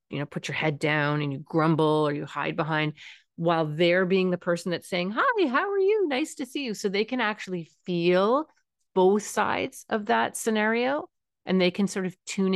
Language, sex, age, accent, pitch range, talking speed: English, female, 40-59, American, 160-200 Hz, 210 wpm